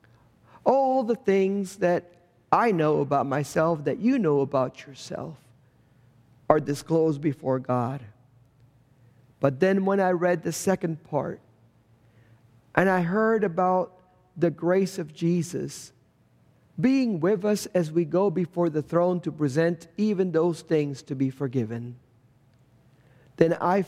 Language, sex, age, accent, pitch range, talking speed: English, male, 50-69, American, 125-180 Hz, 130 wpm